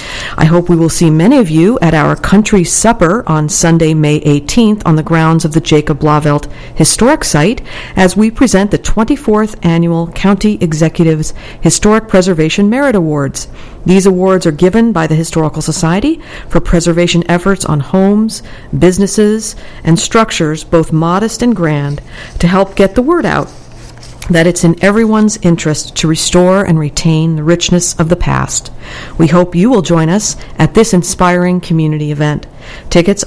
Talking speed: 160 wpm